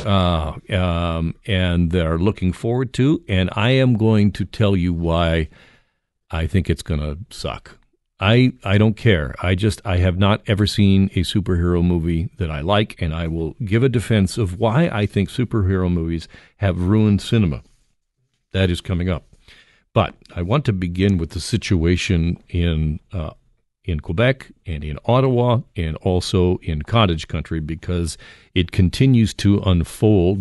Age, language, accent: 50-69, English, American